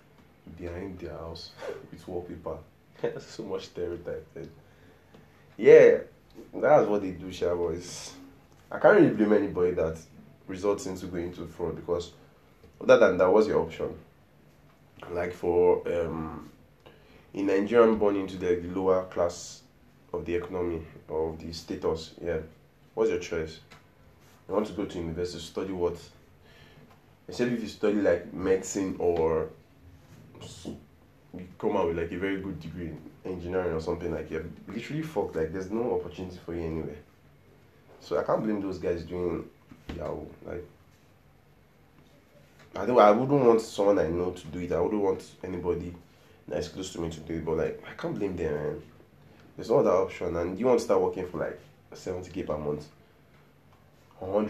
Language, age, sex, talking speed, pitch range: English, 20-39, male, 165 wpm, 85-105 Hz